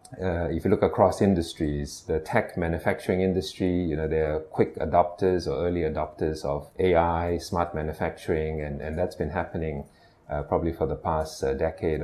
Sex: male